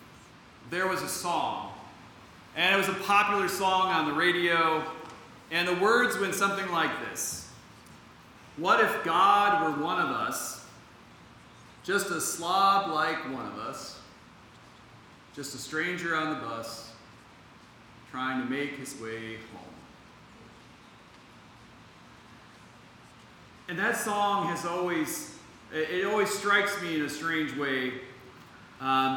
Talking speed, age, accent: 125 wpm, 40-59, American